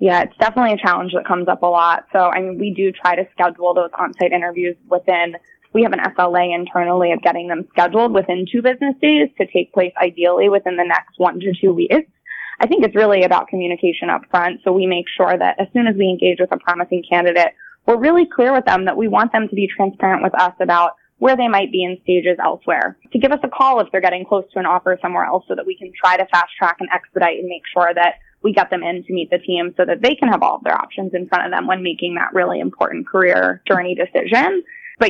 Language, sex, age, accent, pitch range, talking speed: English, female, 20-39, American, 180-200 Hz, 250 wpm